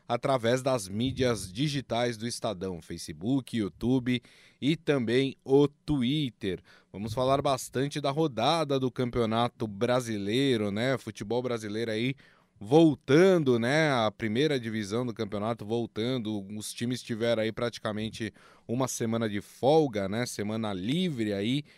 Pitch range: 110-140 Hz